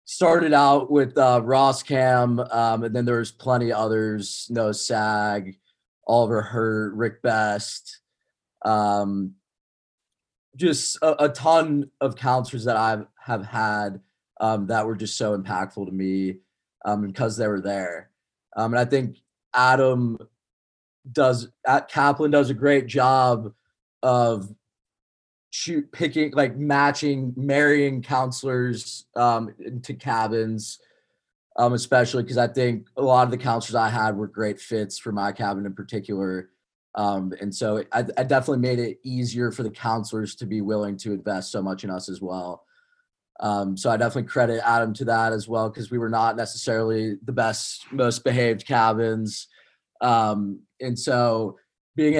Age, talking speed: 20-39, 150 wpm